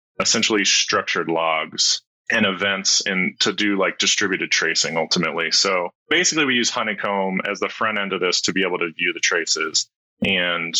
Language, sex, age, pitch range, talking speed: English, male, 30-49, 95-110 Hz, 170 wpm